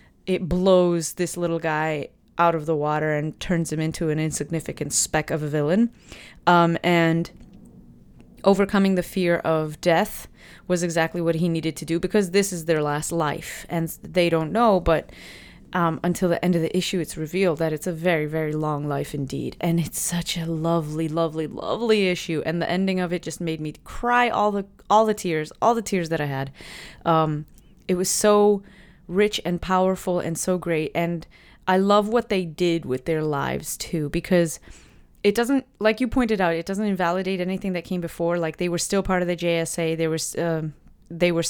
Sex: female